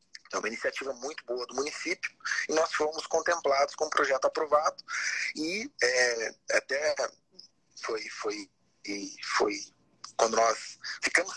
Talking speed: 135 wpm